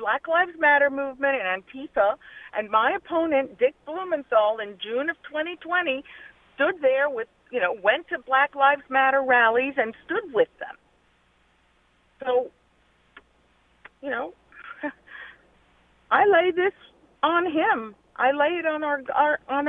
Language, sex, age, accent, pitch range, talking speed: English, female, 50-69, American, 215-295 Hz, 135 wpm